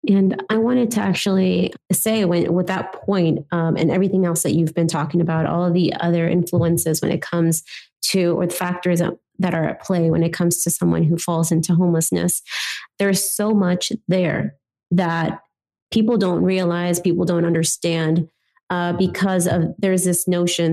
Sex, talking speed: female, 175 wpm